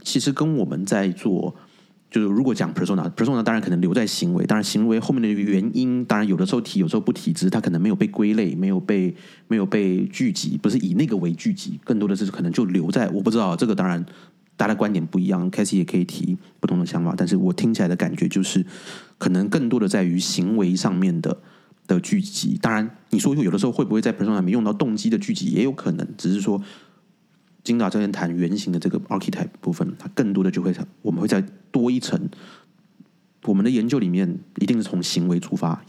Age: 30-49